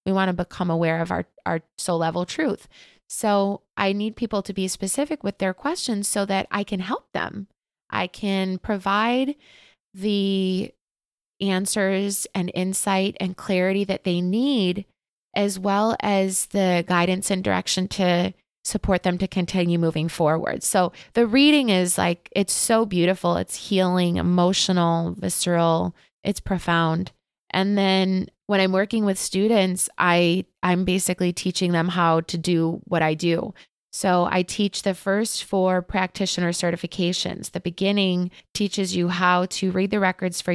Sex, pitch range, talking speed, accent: female, 175-200 Hz, 155 wpm, American